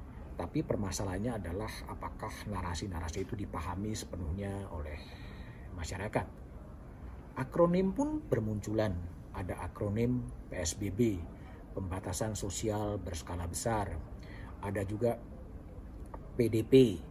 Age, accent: 50-69, native